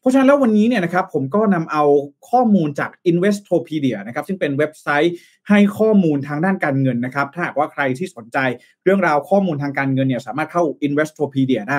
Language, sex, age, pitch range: Thai, male, 20-39, 145-200 Hz